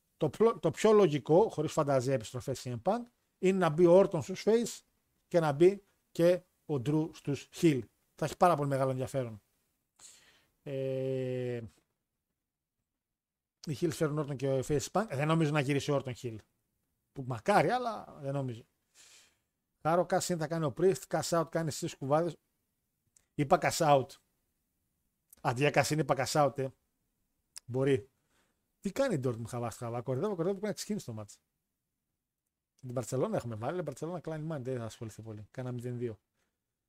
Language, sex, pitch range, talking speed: Greek, male, 135-180 Hz, 155 wpm